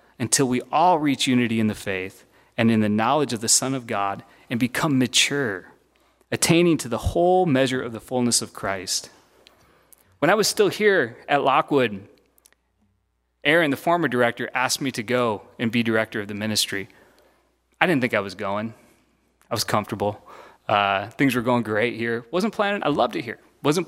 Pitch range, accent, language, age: 115-175 Hz, American, English, 30-49